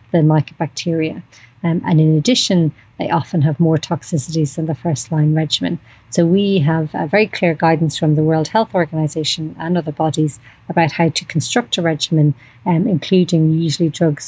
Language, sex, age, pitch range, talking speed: English, female, 30-49, 155-170 Hz, 170 wpm